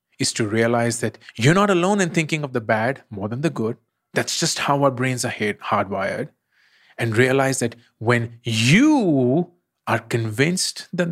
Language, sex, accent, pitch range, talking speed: English, male, Indian, 115-145 Hz, 165 wpm